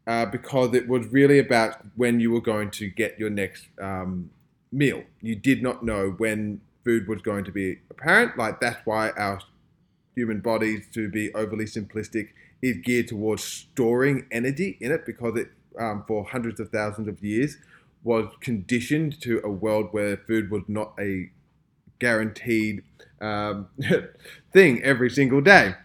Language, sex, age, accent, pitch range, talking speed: English, male, 20-39, Australian, 105-130 Hz, 160 wpm